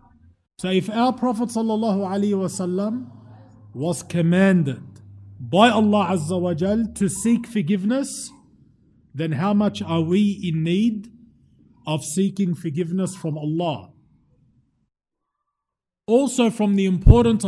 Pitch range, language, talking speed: 165-215 Hz, English, 105 wpm